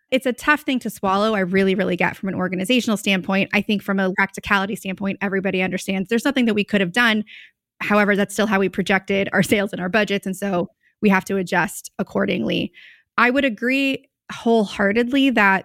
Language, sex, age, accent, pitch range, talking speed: English, female, 20-39, American, 195-225 Hz, 200 wpm